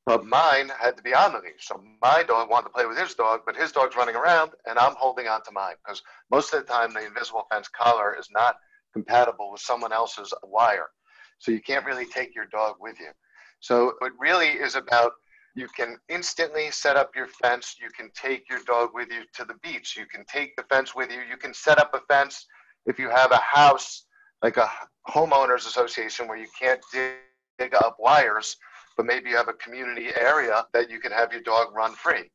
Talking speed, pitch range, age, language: 220 wpm, 115-140 Hz, 50-69, English